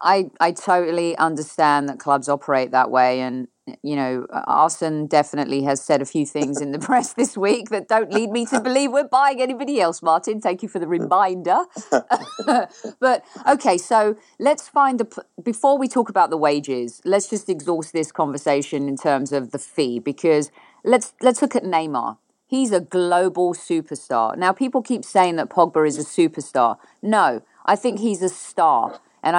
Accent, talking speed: British, 180 wpm